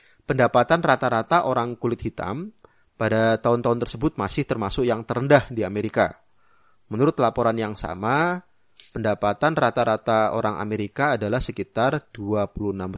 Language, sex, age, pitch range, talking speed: Indonesian, male, 30-49, 105-140 Hz, 115 wpm